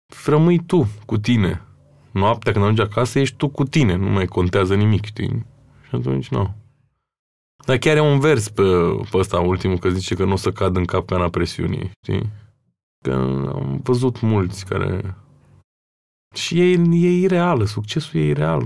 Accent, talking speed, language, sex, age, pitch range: native, 165 wpm, Romanian, male, 20-39, 95-135 Hz